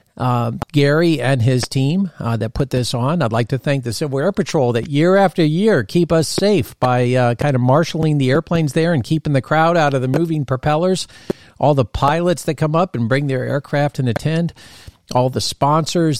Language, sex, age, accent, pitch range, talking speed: English, male, 50-69, American, 115-155 Hz, 210 wpm